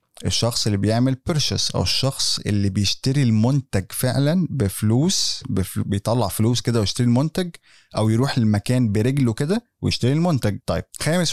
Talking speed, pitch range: 140 wpm, 105-130 Hz